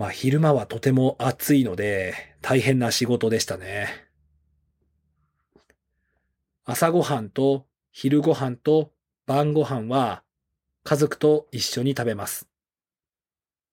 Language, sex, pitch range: Japanese, male, 95-145 Hz